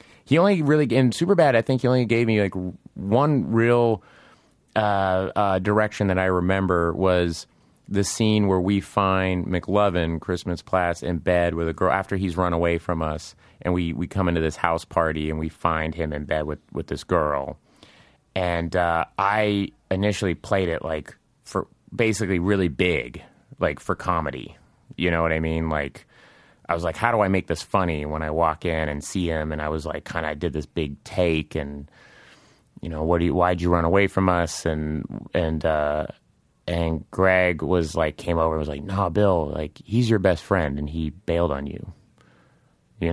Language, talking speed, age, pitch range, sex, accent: English, 195 wpm, 30-49, 80-100 Hz, male, American